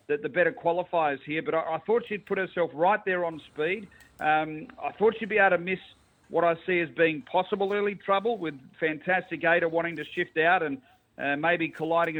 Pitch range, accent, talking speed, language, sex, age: 150-185 Hz, Australian, 210 wpm, English, male, 40-59